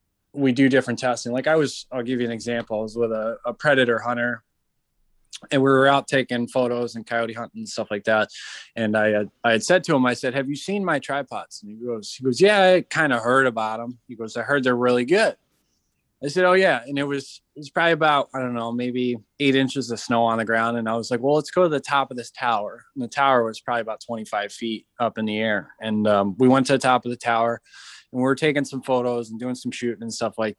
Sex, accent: male, American